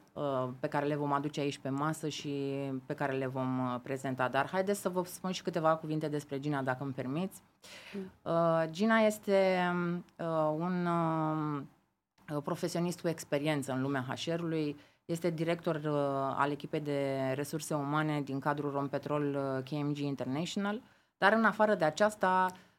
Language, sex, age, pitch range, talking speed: Romanian, female, 30-49, 140-170 Hz, 160 wpm